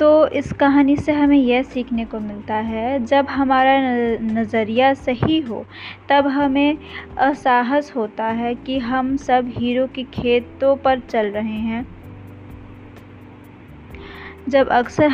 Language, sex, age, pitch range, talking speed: Hindi, female, 20-39, 225-275 Hz, 125 wpm